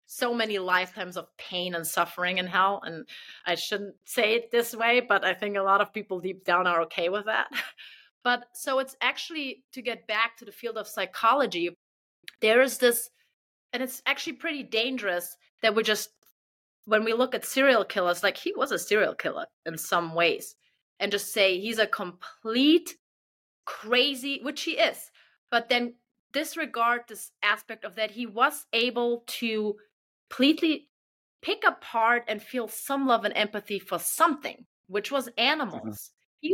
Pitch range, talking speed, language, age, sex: 195-260 Hz, 170 wpm, English, 30-49, female